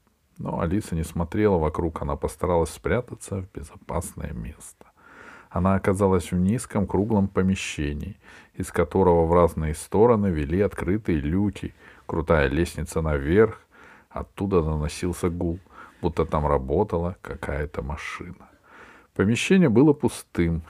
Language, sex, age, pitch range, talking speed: Russian, male, 50-69, 85-105 Hz, 115 wpm